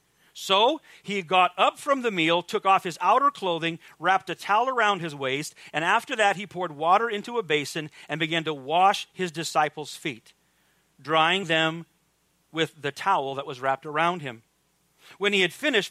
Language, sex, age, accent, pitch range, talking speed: English, male, 40-59, American, 160-205 Hz, 180 wpm